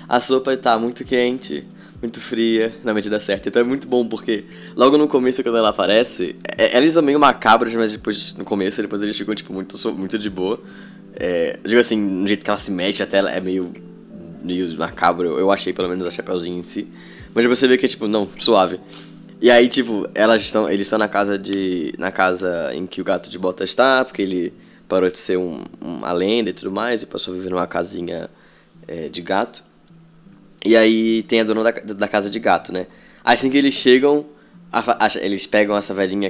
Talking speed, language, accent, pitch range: 215 wpm, Portuguese, Brazilian, 95-125 Hz